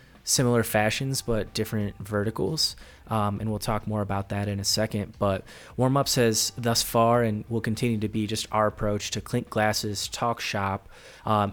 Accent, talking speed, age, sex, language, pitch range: American, 175 wpm, 20-39, male, English, 100-115 Hz